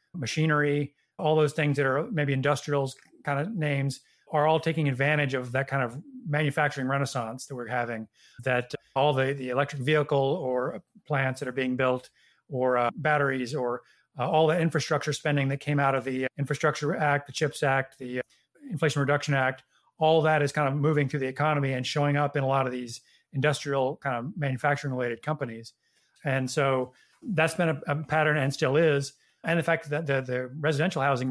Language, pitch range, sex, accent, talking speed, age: English, 130-150 Hz, male, American, 190 wpm, 30-49